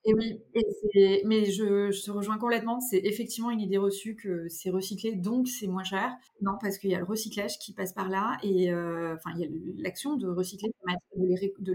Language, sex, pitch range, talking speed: French, female, 190-245 Hz, 230 wpm